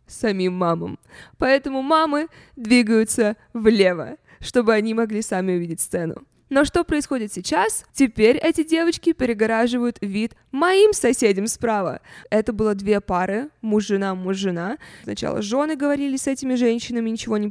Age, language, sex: 20-39, Russian, female